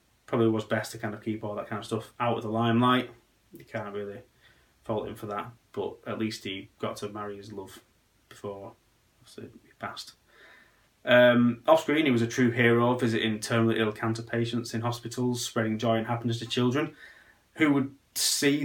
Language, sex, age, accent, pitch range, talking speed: English, male, 20-39, British, 105-120 Hz, 190 wpm